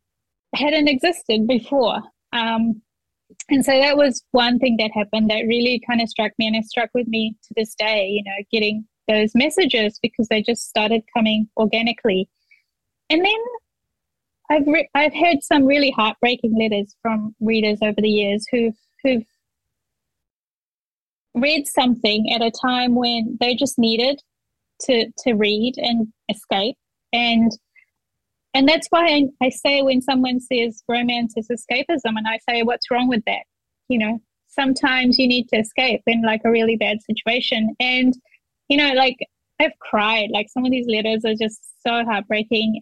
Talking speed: 165 wpm